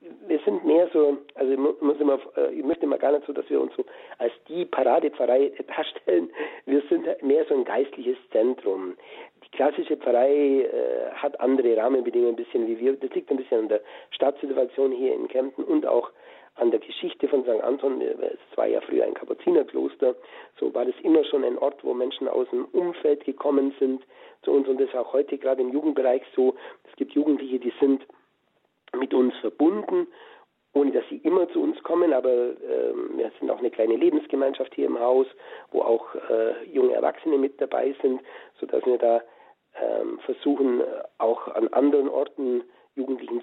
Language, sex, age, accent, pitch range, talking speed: German, male, 50-69, German, 315-440 Hz, 180 wpm